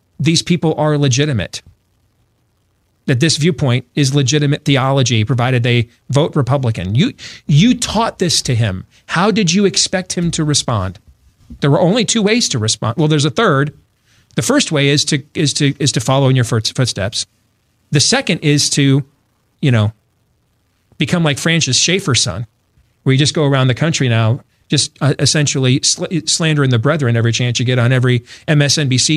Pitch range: 120-175 Hz